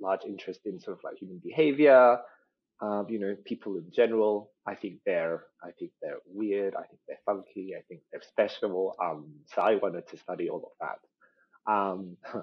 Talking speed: 190 wpm